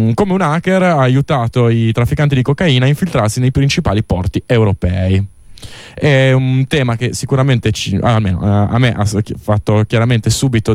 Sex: male